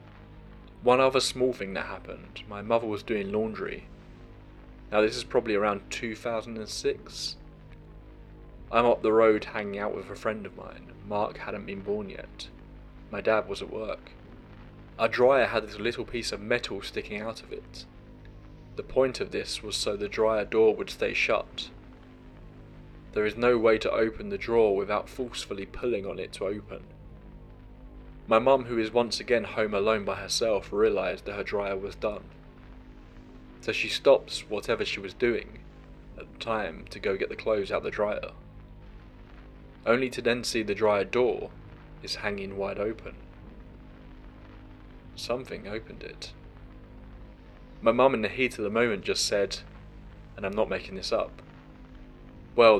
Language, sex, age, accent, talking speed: English, male, 20-39, British, 165 wpm